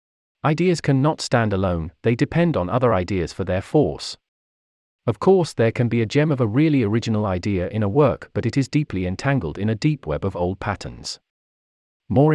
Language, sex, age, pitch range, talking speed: English, male, 40-59, 95-135 Hz, 200 wpm